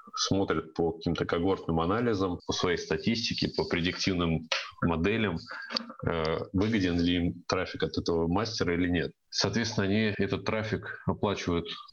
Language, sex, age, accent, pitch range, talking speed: Russian, male, 30-49, native, 85-95 Hz, 125 wpm